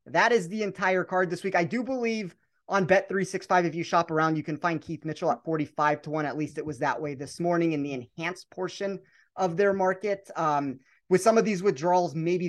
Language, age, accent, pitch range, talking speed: English, 30-49, American, 155-195 Hz, 225 wpm